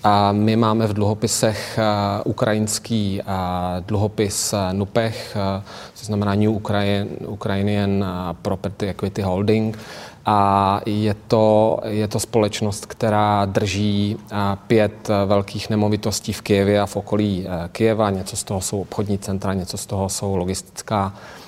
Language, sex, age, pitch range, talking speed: Czech, male, 30-49, 100-110 Hz, 120 wpm